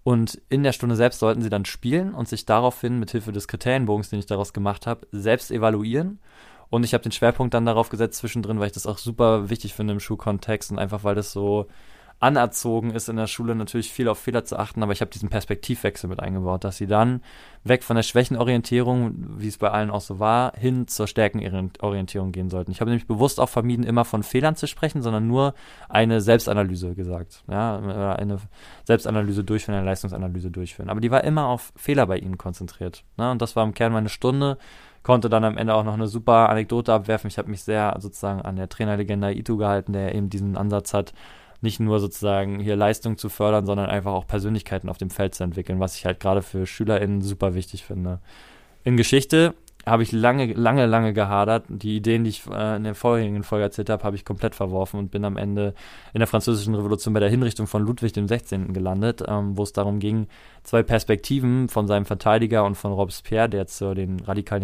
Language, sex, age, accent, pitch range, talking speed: German, male, 20-39, German, 100-115 Hz, 210 wpm